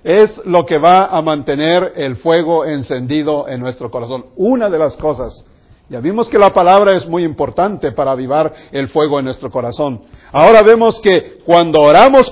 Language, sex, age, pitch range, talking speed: English, male, 50-69, 150-230 Hz, 175 wpm